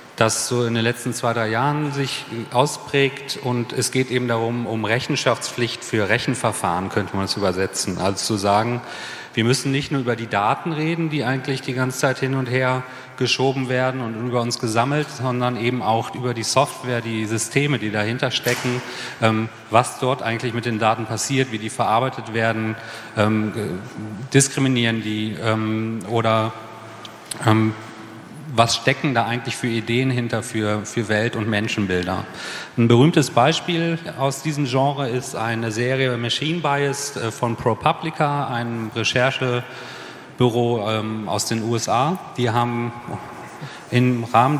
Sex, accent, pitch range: male, German, 110-130 Hz